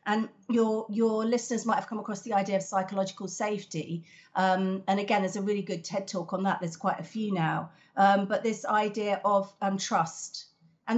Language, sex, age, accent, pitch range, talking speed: English, female, 40-59, British, 185-225 Hz, 200 wpm